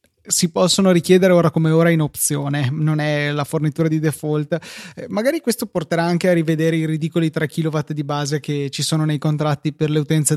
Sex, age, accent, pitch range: male, 20-39, native, 150-170 Hz